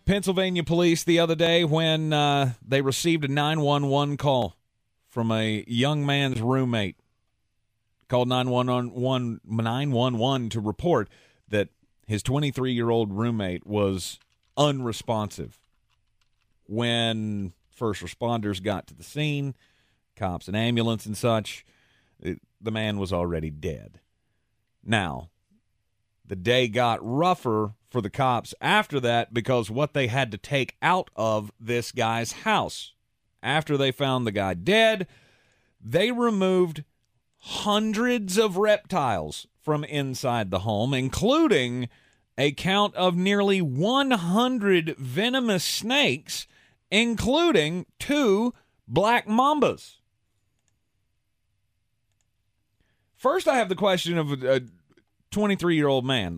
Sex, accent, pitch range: male, American, 105-155 Hz